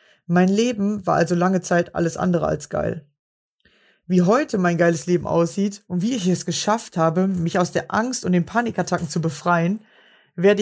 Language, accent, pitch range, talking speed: German, German, 175-205 Hz, 180 wpm